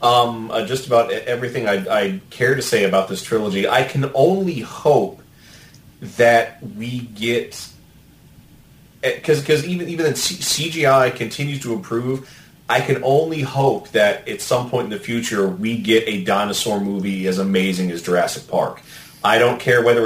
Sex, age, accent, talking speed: male, 30-49, American, 160 wpm